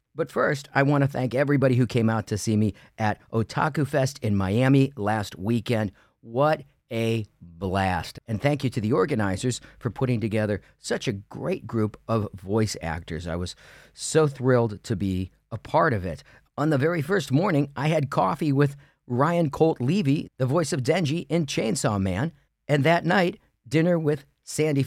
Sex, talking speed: male, 175 wpm